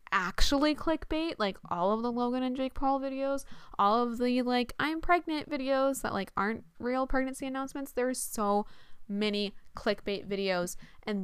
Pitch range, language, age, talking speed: 195-255 Hz, English, 10-29, 160 wpm